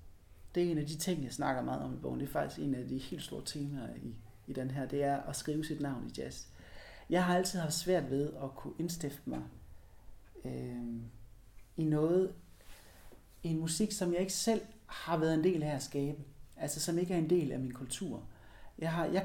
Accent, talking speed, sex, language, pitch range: native, 225 wpm, male, Danish, 130-175 Hz